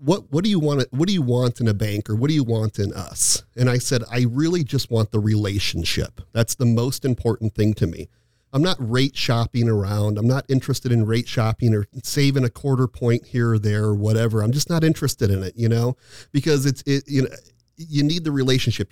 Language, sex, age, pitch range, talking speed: English, male, 40-59, 110-135 Hz, 230 wpm